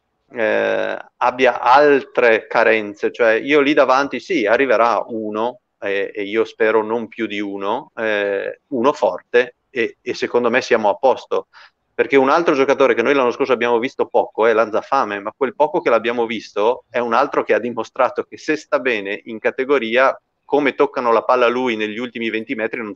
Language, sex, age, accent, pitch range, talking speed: Italian, male, 30-49, native, 115-160 Hz, 185 wpm